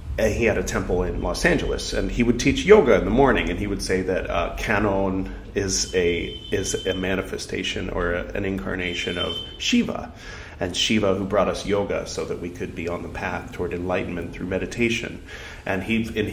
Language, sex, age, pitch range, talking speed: English, male, 30-49, 90-120 Hz, 200 wpm